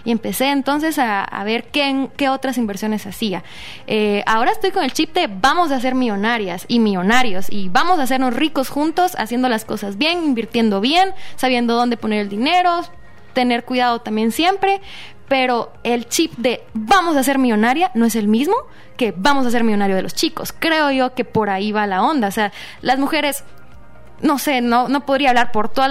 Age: 20-39